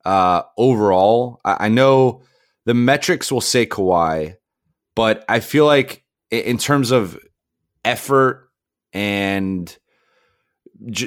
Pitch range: 95-120 Hz